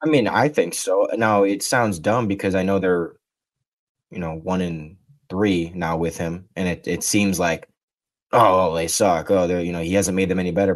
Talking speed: 220 wpm